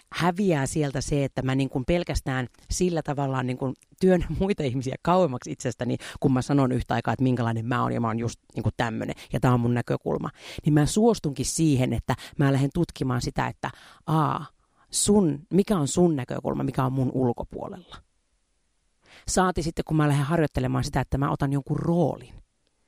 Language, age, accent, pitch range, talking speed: Finnish, 40-59, native, 130-170 Hz, 175 wpm